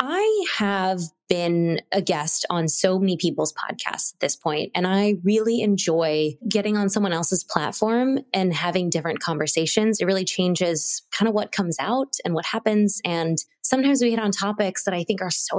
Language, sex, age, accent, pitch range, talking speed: English, female, 20-39, American, 165-215 Hz, 185 wpm